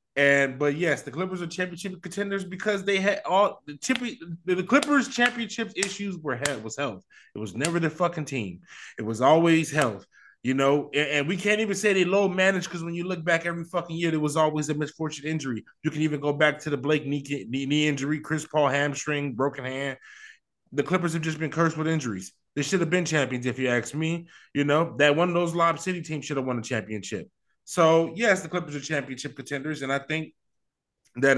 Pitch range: 145-195 Hz